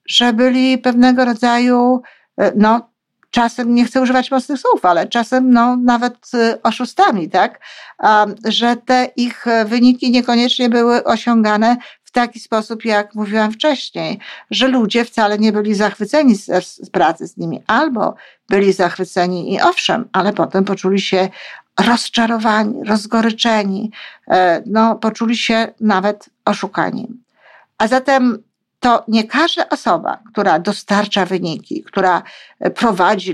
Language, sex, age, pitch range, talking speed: Polish, female, 50-69, 195-240 Hz, 120 wpm